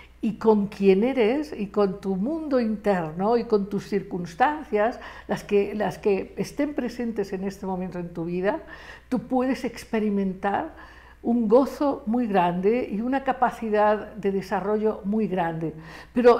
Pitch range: 200-245 Hz